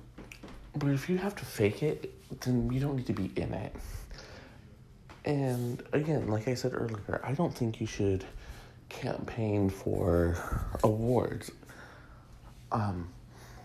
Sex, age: male, 40-59